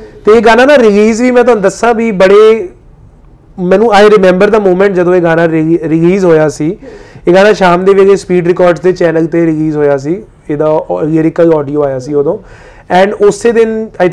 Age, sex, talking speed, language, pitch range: 30-49, male, 190 wpm, Punjabi, 160-195 Hz